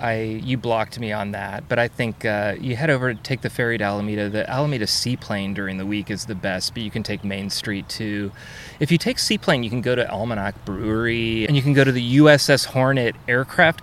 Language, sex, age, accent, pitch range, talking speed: English, male, 30-49, American, 105-135 Hz, 230 wpm